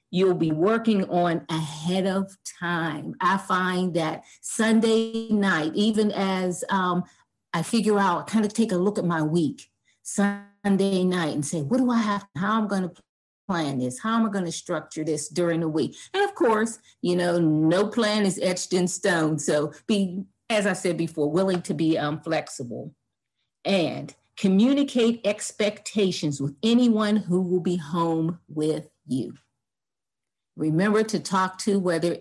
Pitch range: 165-205 Hz